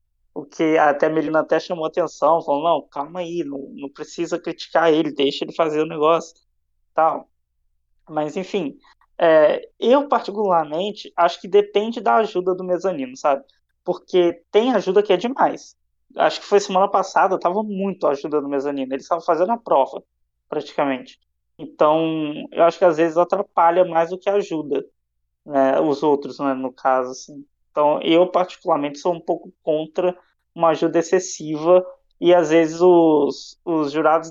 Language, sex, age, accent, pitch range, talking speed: Portuguese, male, 20-39, Brazilian, 150-185 Hz, 165 wpm